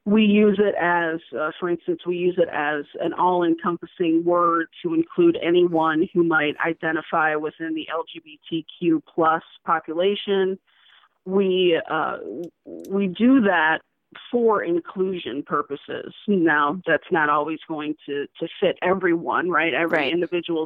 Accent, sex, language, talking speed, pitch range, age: American, female, English, 130 wpm, 170-205 Hz, 40-59